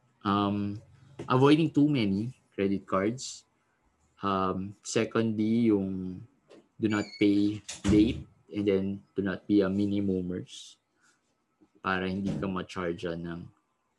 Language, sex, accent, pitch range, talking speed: Filipino, male, native, 95-120 Hz, 105 wpm